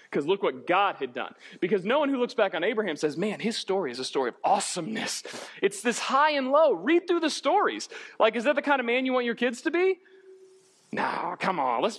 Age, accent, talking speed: 30-49, American, 245 wpm